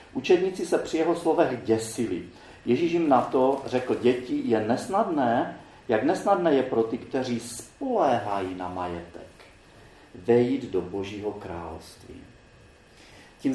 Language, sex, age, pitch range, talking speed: Czech, male, 40-59, 95-135 Hz, 125 wpm